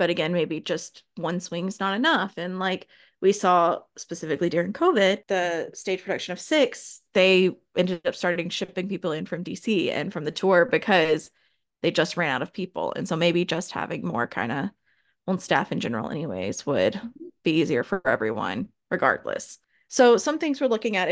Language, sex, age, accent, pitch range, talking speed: English, female, 20-39, American, 175-220 Hz, 190 wpm